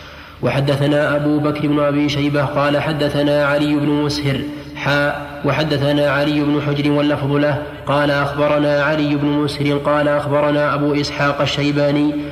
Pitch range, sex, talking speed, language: 145-150 Hz, male, 135 wpm, Arabic